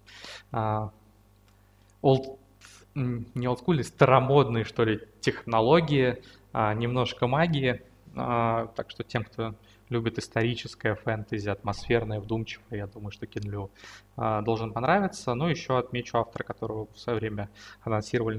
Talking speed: 115 wpm